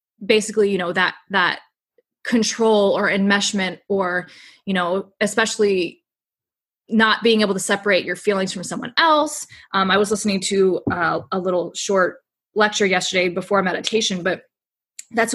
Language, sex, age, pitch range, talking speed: English, female, 20-39, 190-220 Hz, 145 wpm